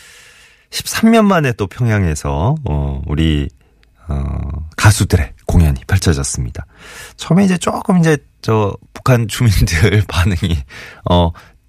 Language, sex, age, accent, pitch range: Korean, male, 30-49, native, 80-115 Hz